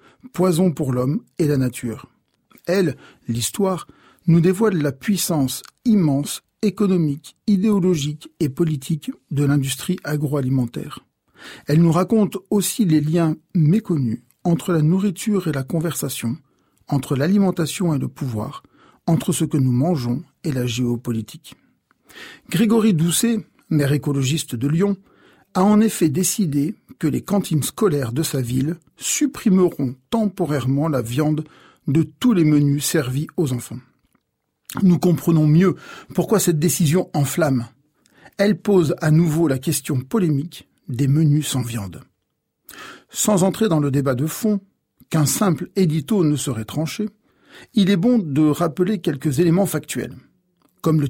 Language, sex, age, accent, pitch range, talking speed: French, male, 50-69, French, 140-185 Hz, 135 wpm